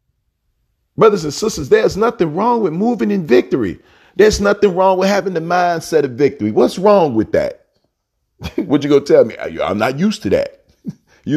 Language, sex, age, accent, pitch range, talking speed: English, male, 40-59, American, 120-190 Hz, 185 wpm